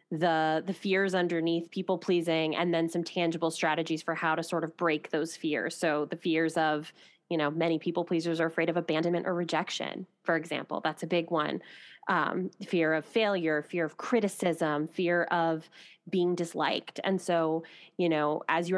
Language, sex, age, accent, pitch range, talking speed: English, female, 20-39, American, 155-180 Hz, 175 wpm